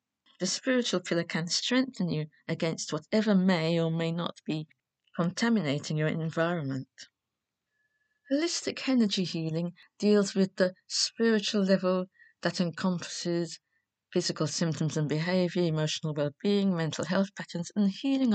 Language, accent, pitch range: English, British, 155-200 Hz